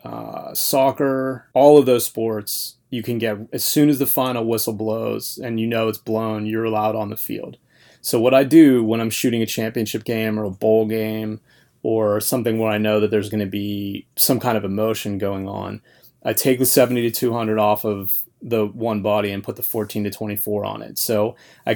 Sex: male